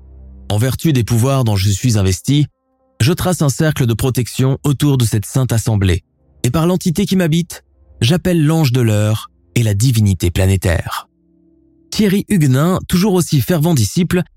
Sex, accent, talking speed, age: male, French, 160 wpm, 20-39